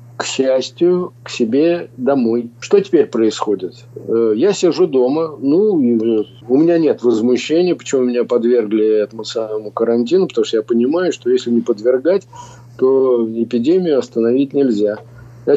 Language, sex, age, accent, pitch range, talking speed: Russian, male, 50-69, native, 115-155 Hz, 135 wpm